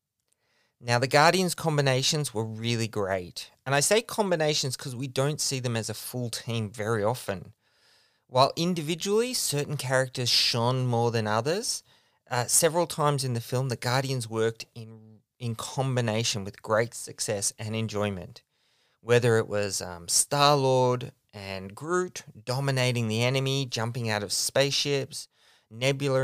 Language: English